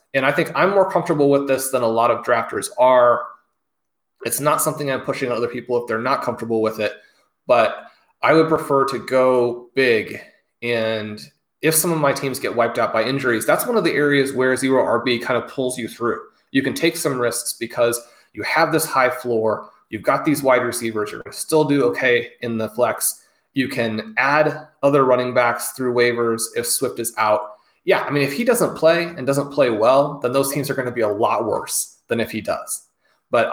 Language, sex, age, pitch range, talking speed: English, male, 30-49, 115-135 Hz, 215 wpm